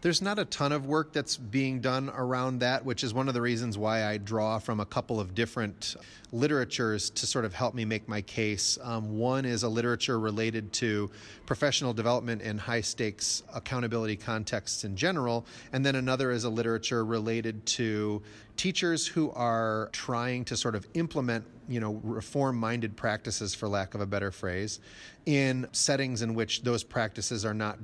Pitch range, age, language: 105-125 Hz, 30-49, English